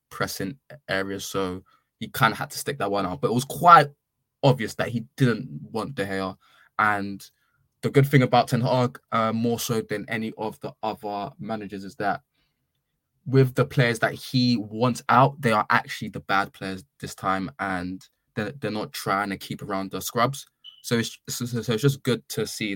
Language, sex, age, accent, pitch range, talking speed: English, male, 20-39, British, 95-125 Hz, 200 wpm